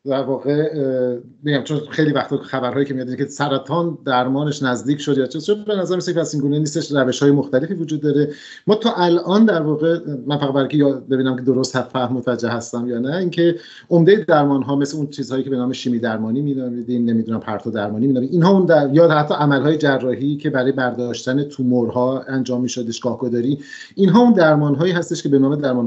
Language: Persian